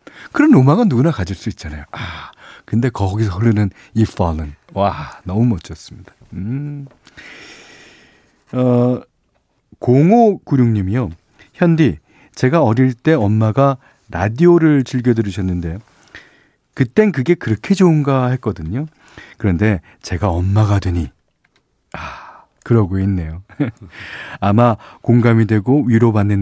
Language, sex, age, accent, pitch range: Korean, male, 40-59, native, 95-125 Hz